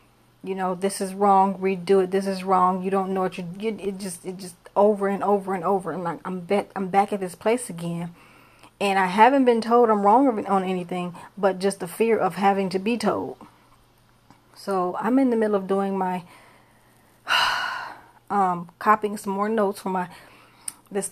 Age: 30-49